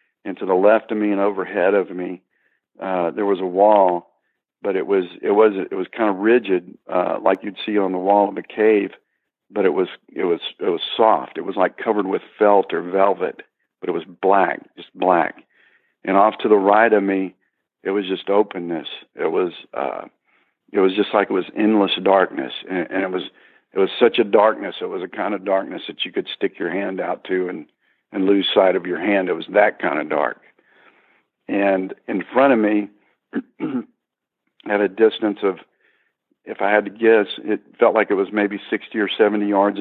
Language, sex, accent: English, male, American